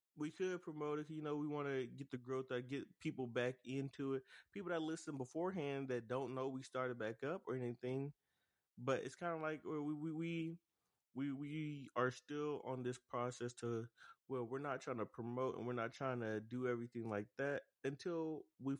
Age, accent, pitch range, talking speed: 20-39, American, 120-140 Hz, 200 wpm